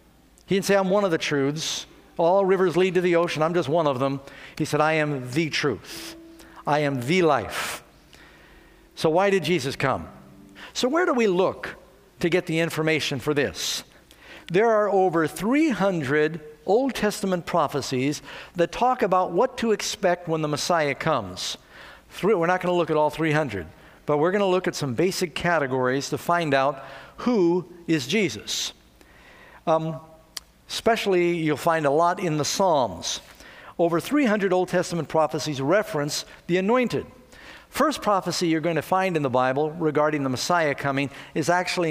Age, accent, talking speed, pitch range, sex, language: 50-69, American, 165 wpm, 145-185 Hz, male, English